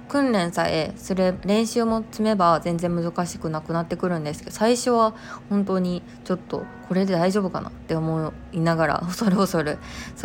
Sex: female